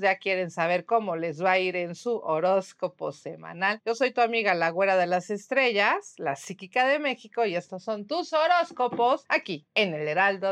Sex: female